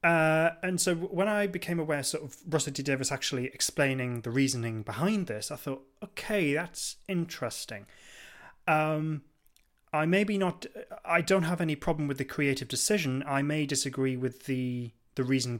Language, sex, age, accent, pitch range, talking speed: English, male, 30-49, British, 120-155 Hz, 165 wpm